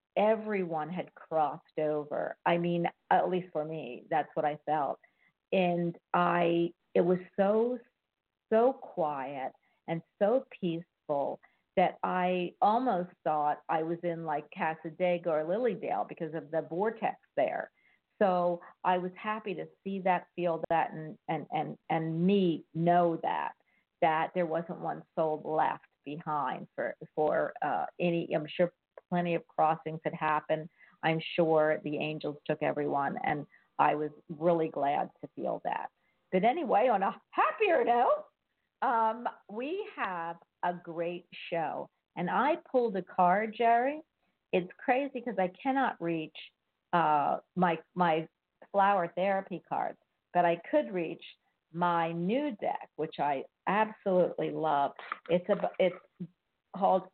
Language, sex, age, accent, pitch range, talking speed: English, female, 50-69, American, 160-200 Hz, 140 wpm